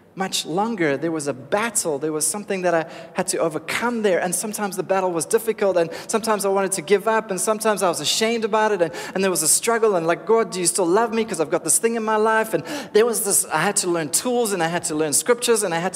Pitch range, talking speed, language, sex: 175-225 Hz, 280 wpm, English, male